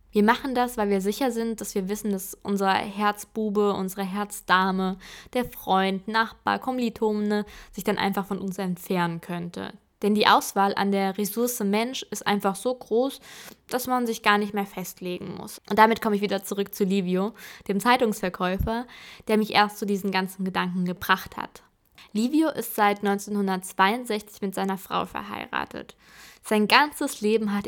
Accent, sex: German, female